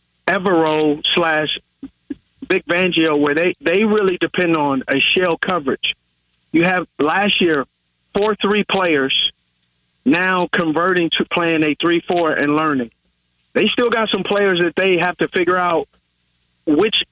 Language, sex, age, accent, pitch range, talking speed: English, male, 50-69, American, 150-185 Hz, 140 wpm